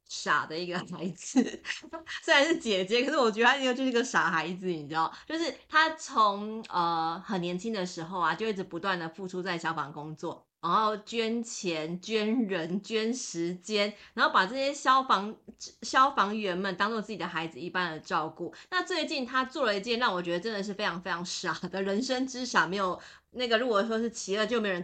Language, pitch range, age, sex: Chinese, 175-230 Hz, 30-49, female